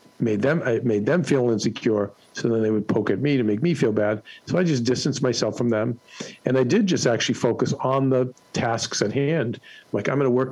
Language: English